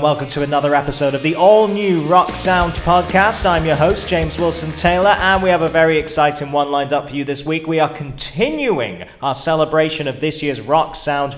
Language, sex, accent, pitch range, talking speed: English, male, British, 125-155 Hz, 210 wpm